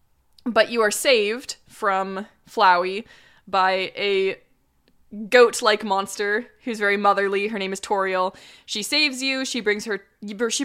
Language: English